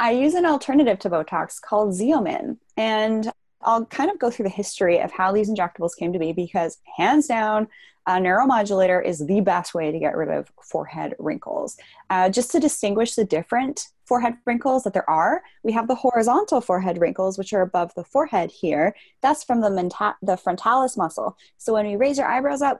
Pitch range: 180-245 Hz